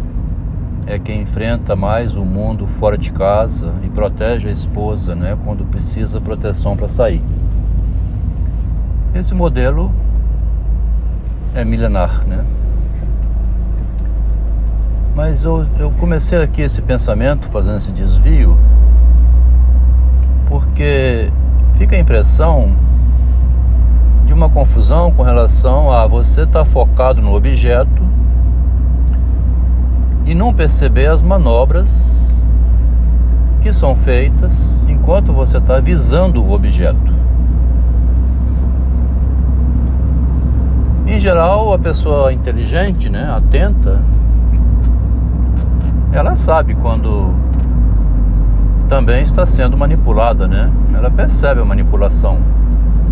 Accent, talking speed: Brazilian, 95 wpm